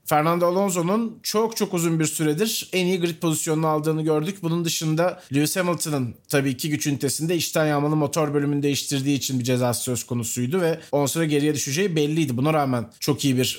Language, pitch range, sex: Turkish, 140-190 Hz, male